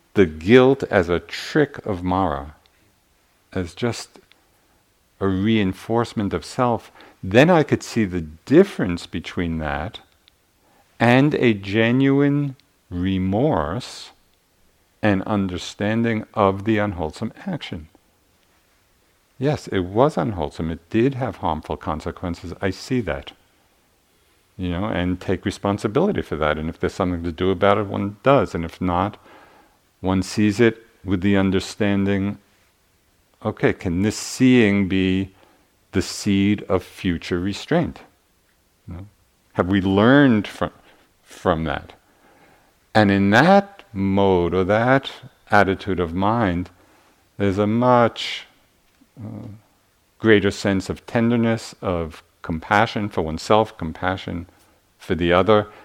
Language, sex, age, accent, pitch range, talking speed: English, male, 50-69, American, 90-110 Hz, 120 wpm